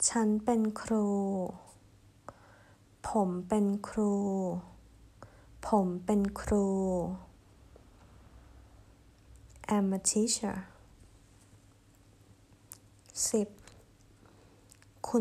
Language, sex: Thai, female